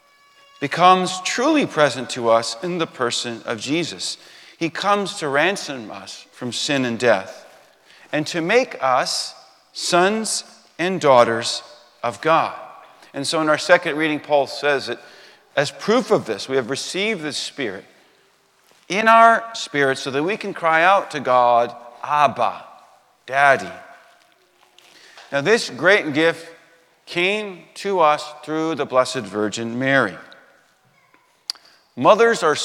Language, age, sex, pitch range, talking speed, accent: English, 40-59, male, 130-175 Hz, 135 wpm, American